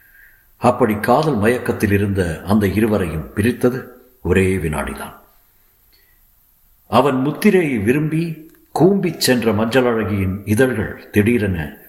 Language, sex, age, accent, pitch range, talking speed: Tamil, male, 50-69, native, 90-120 Hz, 85 wpm